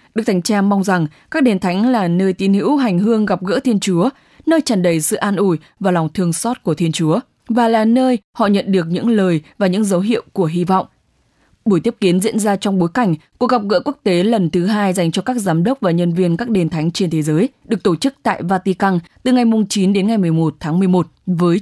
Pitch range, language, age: 175-230 Hz, English, 20-39